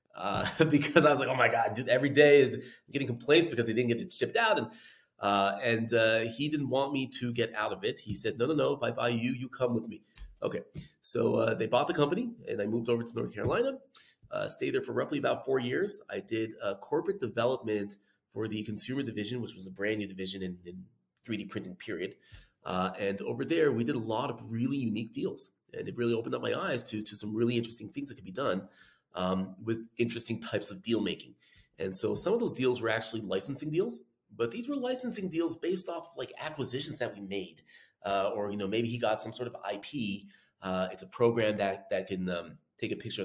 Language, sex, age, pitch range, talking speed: English, male, 30-49, 110-145 Hz, 235 wpm